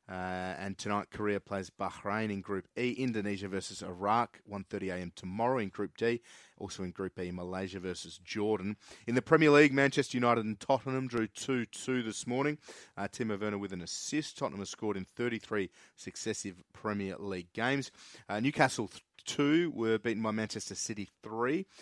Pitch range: 95-115 Hz